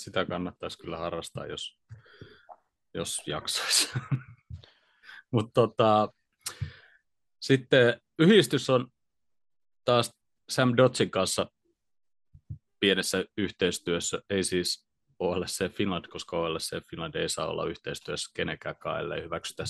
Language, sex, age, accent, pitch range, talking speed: Finnish, male, 30-49, native, 95-120 Hz, 95 wpm